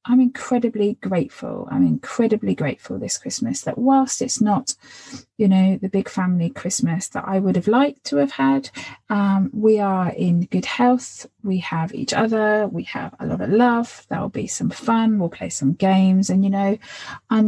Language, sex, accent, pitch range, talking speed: English, female, British, 170-220 Hz, 185 wpm